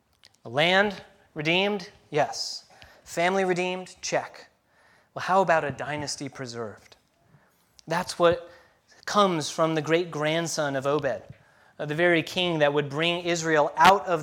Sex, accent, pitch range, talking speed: male, American, 140-170 Hz, 125 wpm